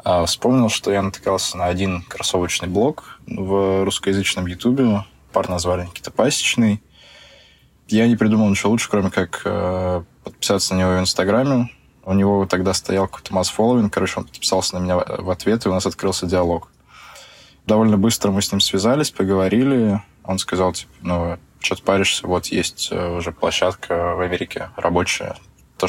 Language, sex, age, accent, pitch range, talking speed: Russian, male, 20-39, native, 90-100 Hz, 155 wpm